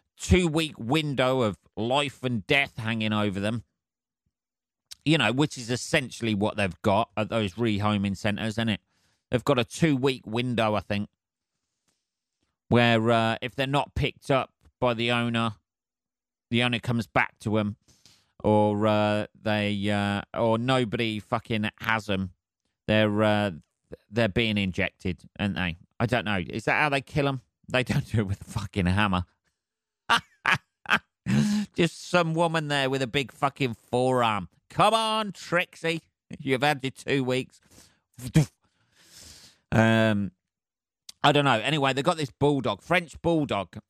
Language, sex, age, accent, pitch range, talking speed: English, male, 30-49, British, 105-140 Hz, 145 wpm